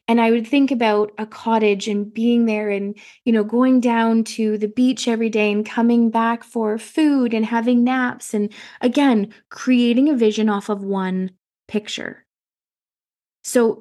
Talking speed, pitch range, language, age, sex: 165 wpm, 205-235 Hz, English, 20-39, female